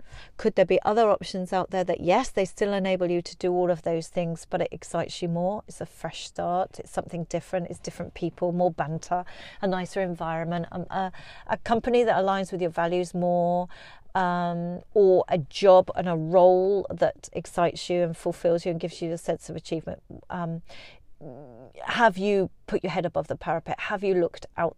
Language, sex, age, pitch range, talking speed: English, female, 40-59, 170-185 Hz, 195 wpm